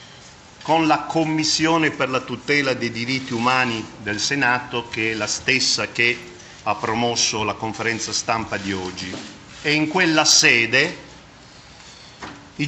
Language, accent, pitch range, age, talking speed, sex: Italian, native, 120-165 Hz, 50-69, 135 wpm, male